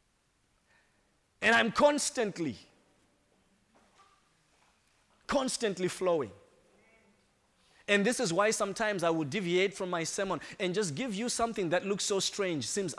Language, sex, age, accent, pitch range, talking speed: English, male, 30-49, South African, 165-210 Hz, 120 wpm